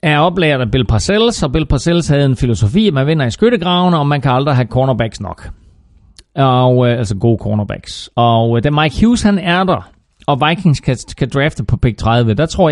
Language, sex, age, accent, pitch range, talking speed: Danish, male, 30-49, native, 115-155 Hz, 210 wpm